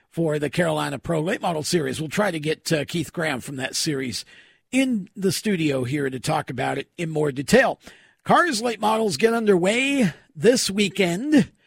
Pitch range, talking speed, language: 155-210 Hz, 180 wpm, English